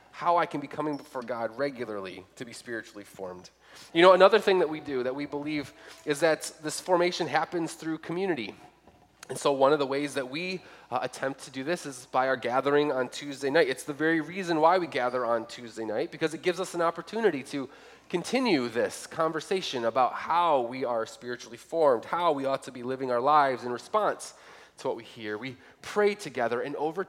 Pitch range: 125-170 Hz